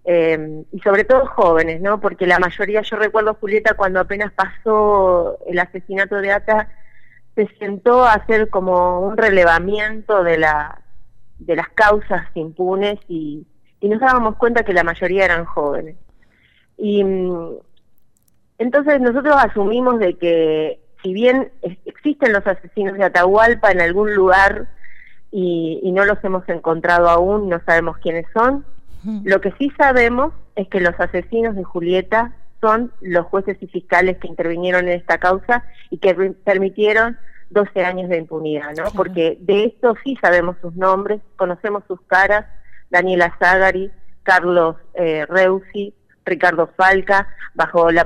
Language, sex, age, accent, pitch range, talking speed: Spanish, female, 30-49, Argentinian, 175-210 Hz, 145 wpm